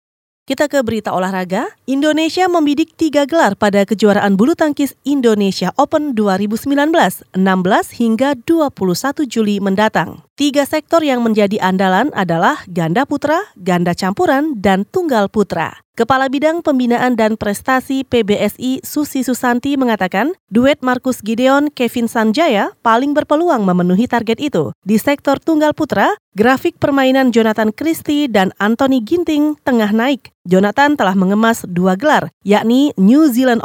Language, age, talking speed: Indonesian, 30-49, 130 wpm